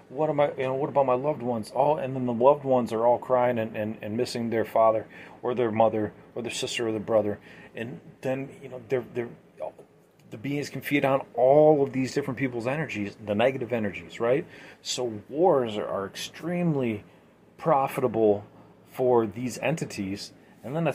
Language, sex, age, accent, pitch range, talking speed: English, male, 30-49, American, 110-130 Hz, 195 wpm